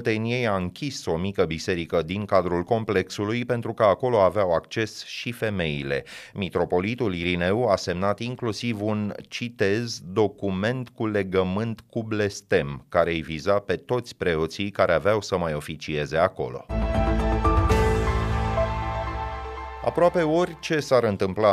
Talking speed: 125 wpm